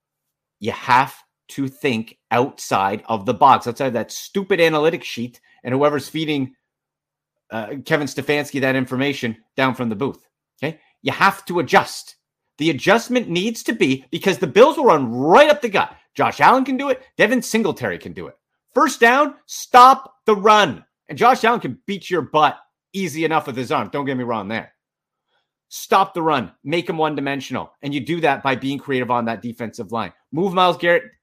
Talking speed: 185 wpm